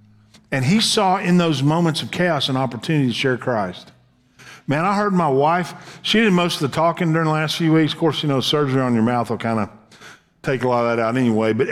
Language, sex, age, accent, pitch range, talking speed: English, male, 50-69, American, 125-185 Hz, 245 wpm